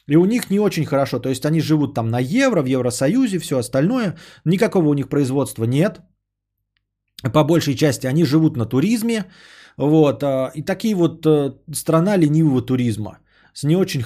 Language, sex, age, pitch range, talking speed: Bulgarian, male, 20-39, 120-160 Hz, 165 wpm